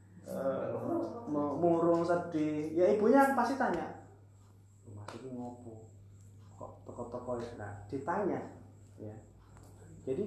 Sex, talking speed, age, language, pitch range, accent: male, 95 wpm, 20-39, Indonesian, 105-170 Hz, native